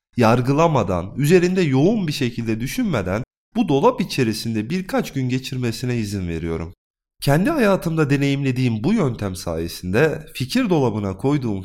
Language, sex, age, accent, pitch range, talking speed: Turkish, male, 30-49, native, 100-150 Hz, 120 wpm